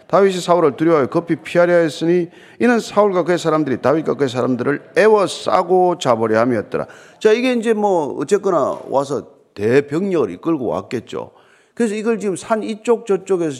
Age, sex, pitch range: 40-59, male, 170-250 Hz